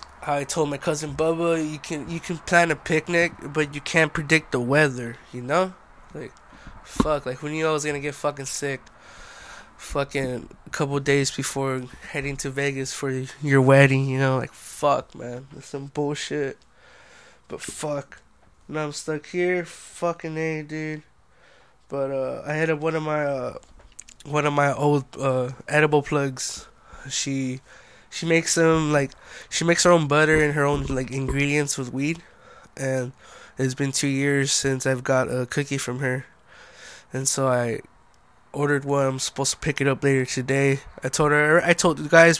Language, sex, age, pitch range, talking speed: English, male, 20-39, 135-155 Hz, 175 wpm